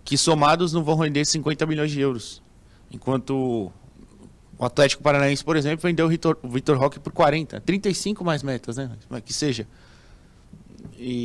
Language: Portuguese